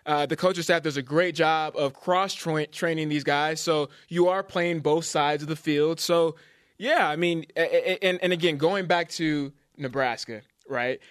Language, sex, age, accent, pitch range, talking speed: English, male, 20-39, American, 150-185 Hz, 195 wpm